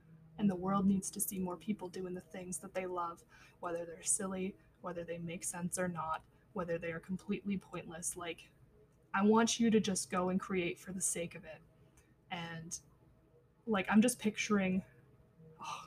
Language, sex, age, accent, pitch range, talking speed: English, female, 20-39, American, 170-205 Hz, 180 wpm